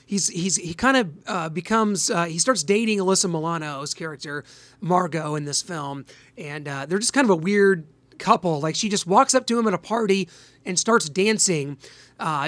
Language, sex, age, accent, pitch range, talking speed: English, male, 30-49, American, 155-200 Hz, 195 wpm